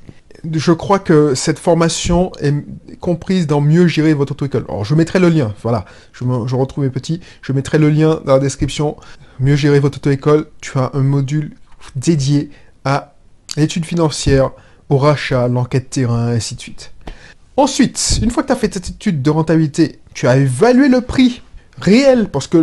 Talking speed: 200 wpm